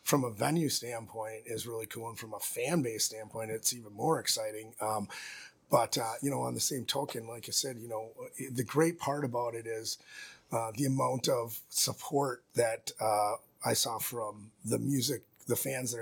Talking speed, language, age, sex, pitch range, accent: 195 wpm, English, 30-49, male, 115-140 Hz, American